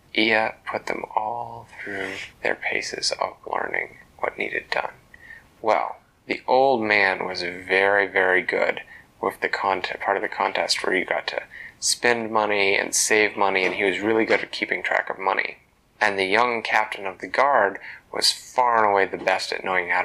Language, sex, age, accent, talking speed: English, male, 30-49, American, 185 wpm